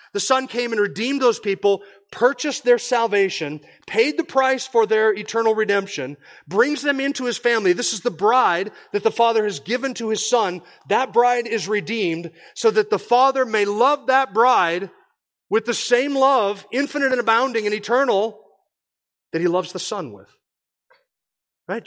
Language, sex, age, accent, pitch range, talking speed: English, male, 30-49, American, 160-245 Hz, 170 wpm